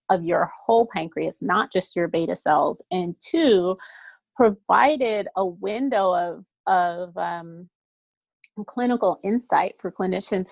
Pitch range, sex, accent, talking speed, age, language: 180-225 Hz, female, American, 120 wpm, 30-49, English